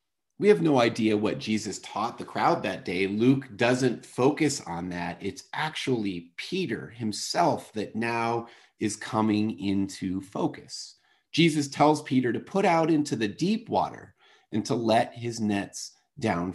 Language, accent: English, American